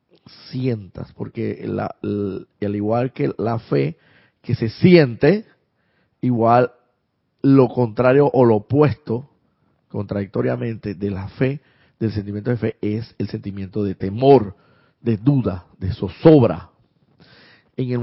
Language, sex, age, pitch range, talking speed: Spanish, male, 50-69, 105-135 Hz, 115 wpm